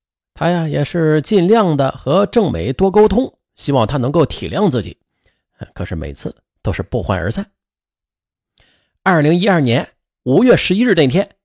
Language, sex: Chinese, male